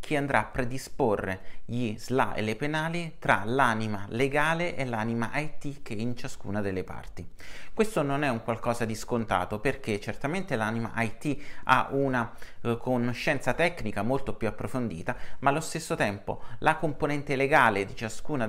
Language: Italian